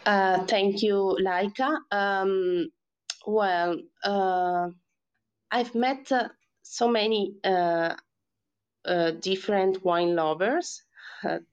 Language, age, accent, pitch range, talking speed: English, 20-39, Italian, 170-210 Hz, 95 wpm